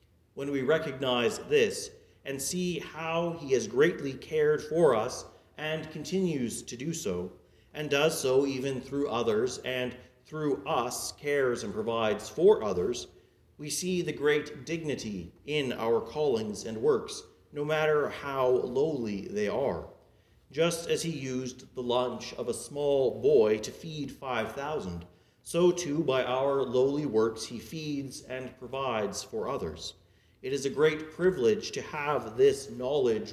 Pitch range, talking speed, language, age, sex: 120-155 Hz, 150 wpm, English, 40-59, male